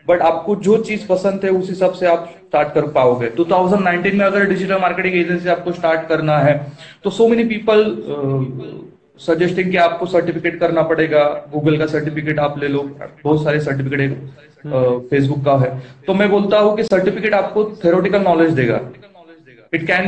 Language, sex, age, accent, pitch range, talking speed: Hindi, male, 30-49, native, 150-185 Hz, 170 wpm